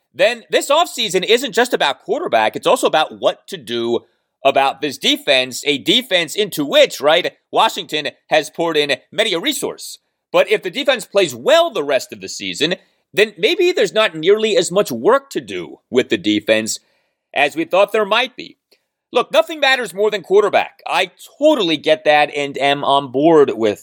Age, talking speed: 30-49, 185 wpm